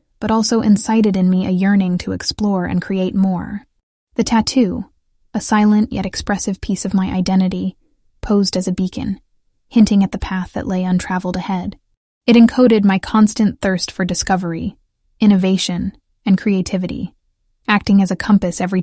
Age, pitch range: 10-29, 185-215 Hz